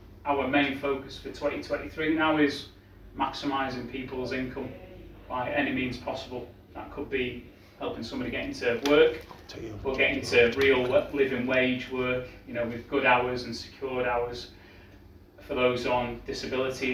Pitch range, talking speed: 100-135 Hz, 145 wpm